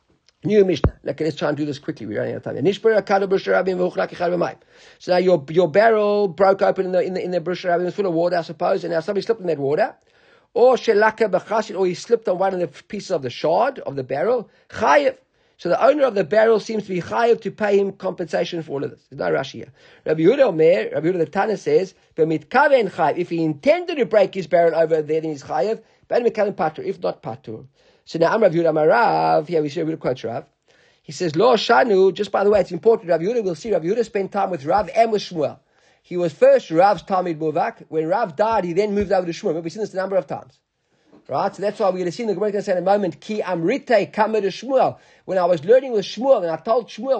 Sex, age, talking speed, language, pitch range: male, 50-69, 240 wpm, English, 170-220 Hz